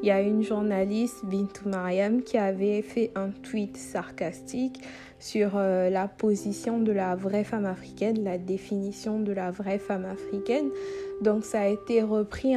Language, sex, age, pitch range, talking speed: French, female, 50-69, 195-235 Hz, 160 wpm